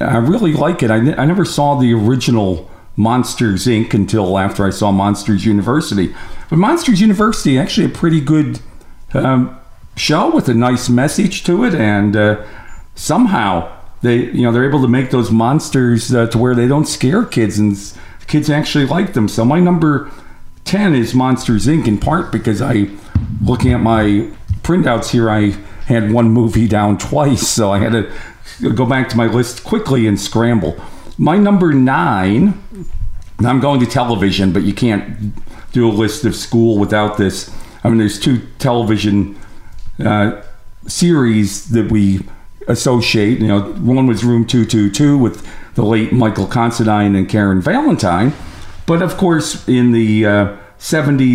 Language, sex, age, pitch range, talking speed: English, male, 50-69, 105-130 Hz, 165 wpm